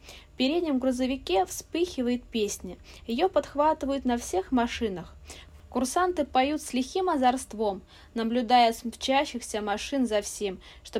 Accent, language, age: native, Russian, 20-39